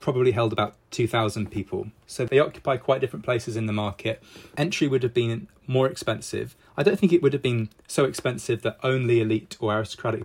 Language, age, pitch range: English, 20-39, 110-135 Hz